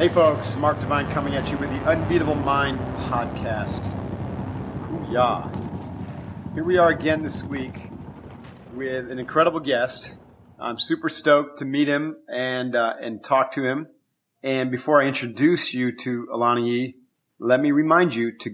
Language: English